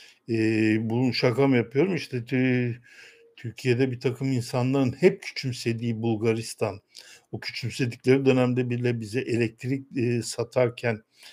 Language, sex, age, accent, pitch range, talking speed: Turkish, male, 60-79, native, 110-135 Hz, 110 wpm